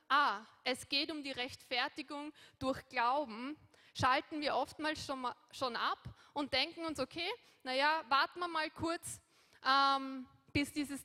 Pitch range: 235-285 Hz